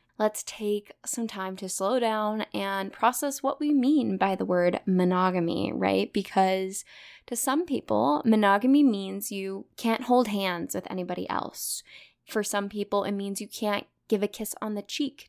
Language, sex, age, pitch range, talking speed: English, female, 10-29, 195-235 Hz, 170 wpm